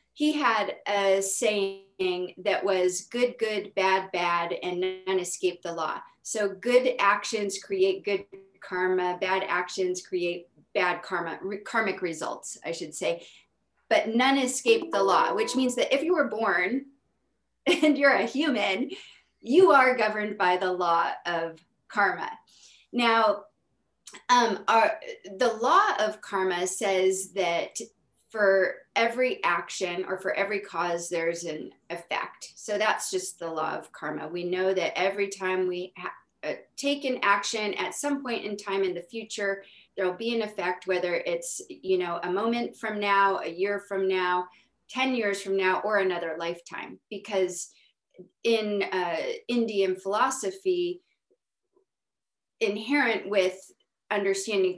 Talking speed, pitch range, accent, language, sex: 140 wpm, 185-240 Hz, American, English, female